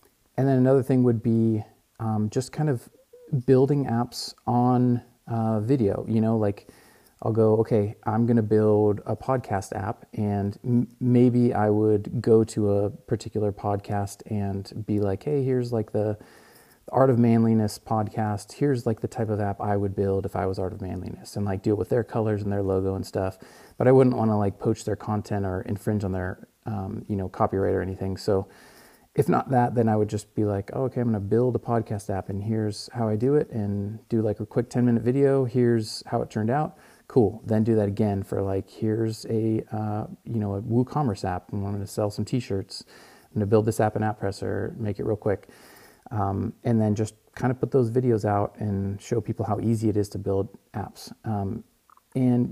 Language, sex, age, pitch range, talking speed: English, male, 30-49, 100-120 Hz, 210 wpm